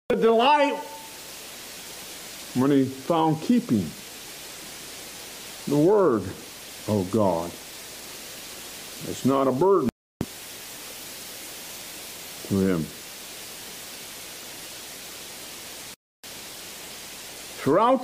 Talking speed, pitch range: 55 wpm, 185-235 Hz